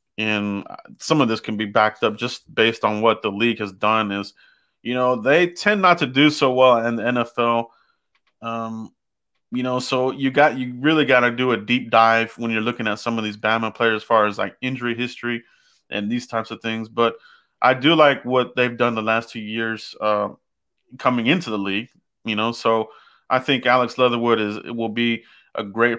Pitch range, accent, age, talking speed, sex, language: 110-130 Hz, American, 30-49, 210 wpm, male, English